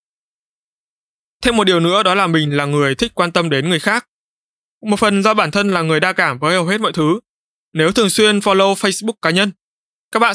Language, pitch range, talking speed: Vietnamese, 160-205 Hz, 220 wpm